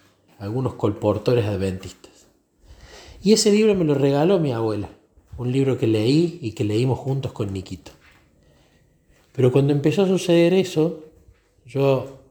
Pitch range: 105-155 Hz